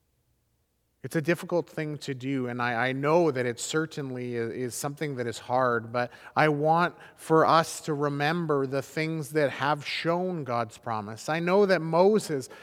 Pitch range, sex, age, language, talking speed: 150-195 Hz, male, 30-49, English, 175 wpm